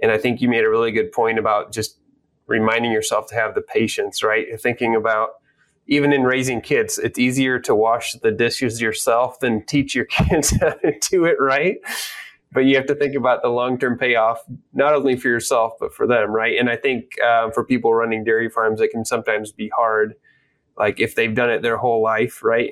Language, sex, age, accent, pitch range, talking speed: English, male, 20-39, American, 115-145 Hz, 210 wpm